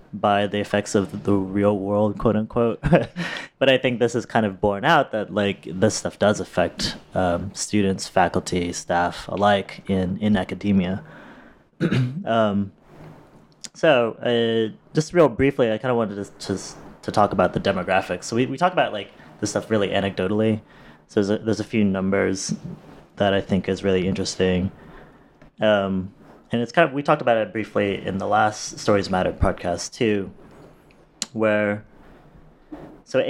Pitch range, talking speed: 95-115 Hz, 165 wpm